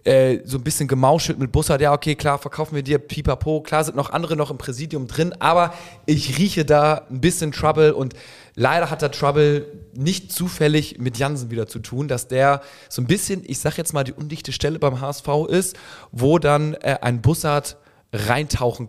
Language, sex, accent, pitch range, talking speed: German, male, German, 130-155 Hz, 195 wpm